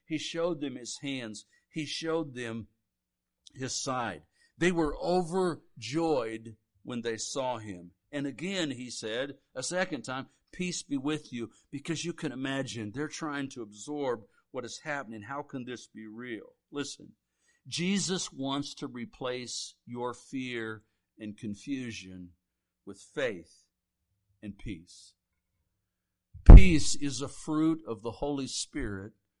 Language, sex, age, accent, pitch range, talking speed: English, male, 60-79, American, 110-155 Hz, 135 wpm